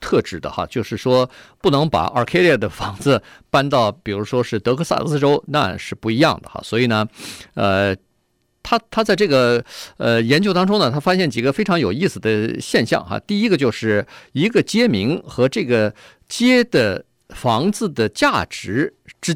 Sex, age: male, 50-69